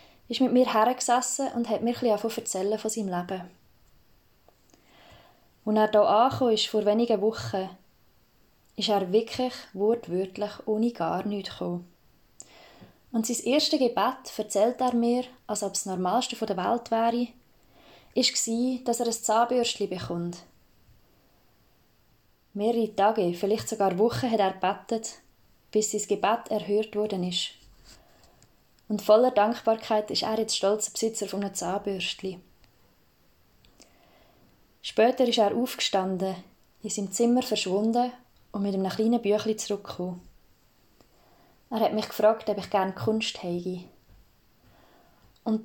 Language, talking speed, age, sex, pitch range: German, 135 wpm, 20-39, female, 190-225 Hz